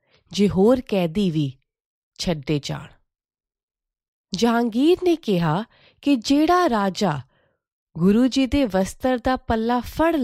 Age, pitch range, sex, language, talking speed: 30-49, 160-240 Hz, female, Punjabi, 100 wpm